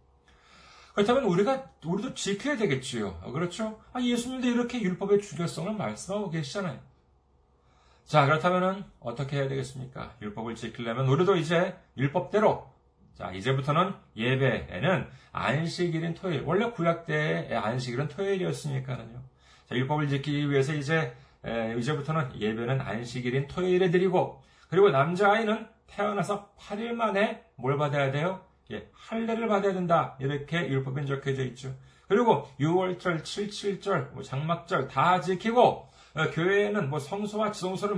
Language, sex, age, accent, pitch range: Korean, male, 40-59, native, 125-195 Hz